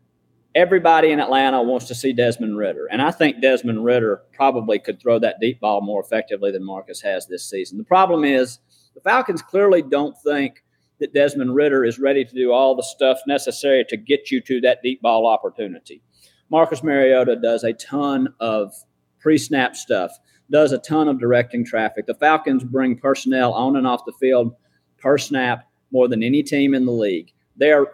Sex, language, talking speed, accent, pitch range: male, English, 185 wpm, American, 115-145 Hz